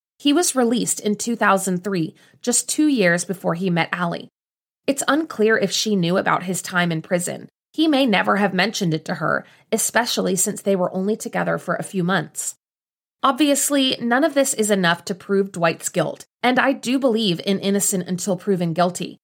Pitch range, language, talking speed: 175-230 Hz, English, 185 wpm